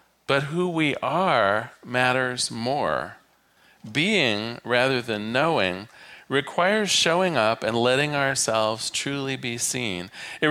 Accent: American